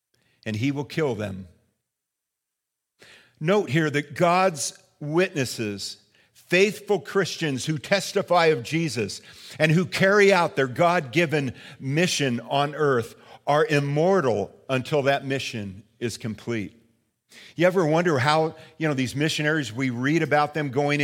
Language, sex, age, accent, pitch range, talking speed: English, male, 50-69, American, 125-150 Hz, 130 wpm